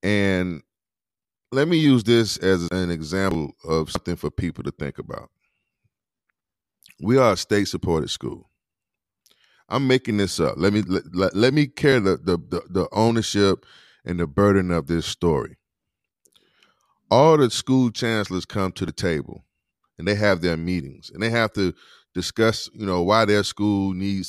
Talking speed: 160 wpm